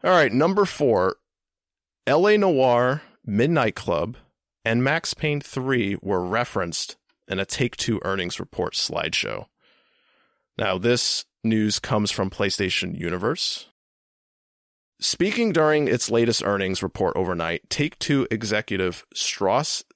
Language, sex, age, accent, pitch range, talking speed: English, male, 30-49, American, 95-135 Hz, 110 wpm